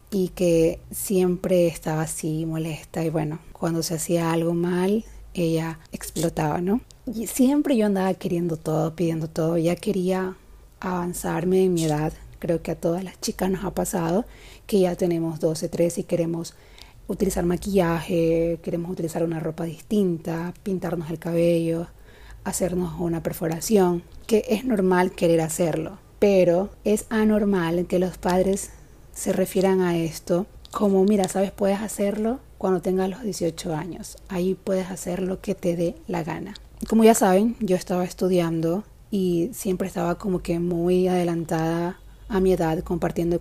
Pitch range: 165-190 Hz